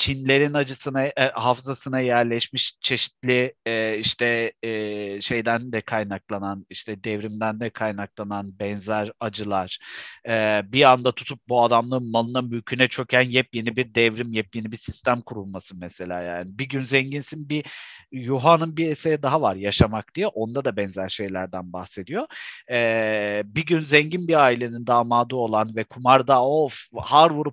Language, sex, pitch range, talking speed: Turkish, male, 110-150 Hz, 135 wpm